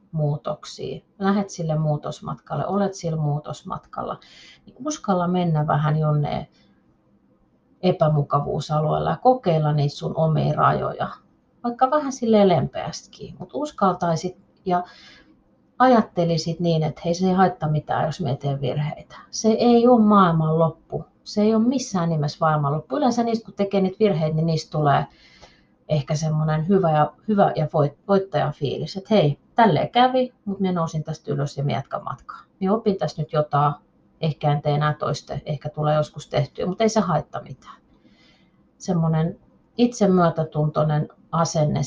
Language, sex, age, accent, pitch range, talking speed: Finnish, female, 30-49, native, 150-195 Hz, 145 wpm